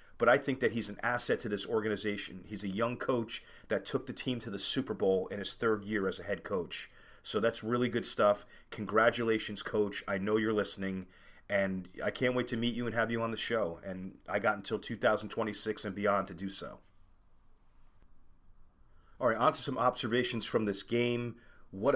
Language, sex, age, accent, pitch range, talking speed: English, male, 30-49, American, 95-115 Hz, 200 wpm